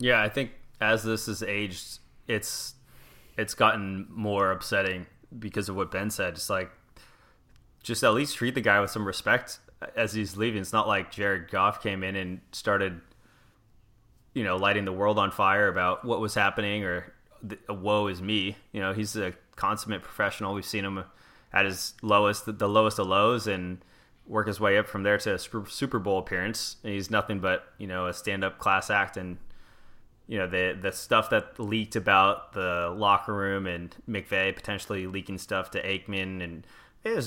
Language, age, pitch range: English, 20-39, 100-115 Hz